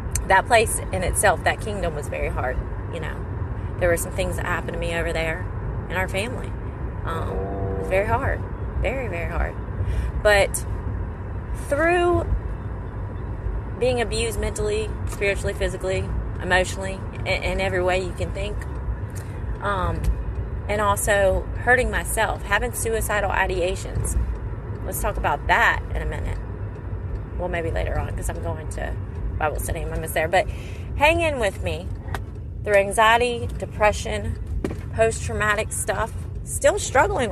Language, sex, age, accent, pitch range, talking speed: English, female, 30-49, American, 95-110 Hz, 140 wpm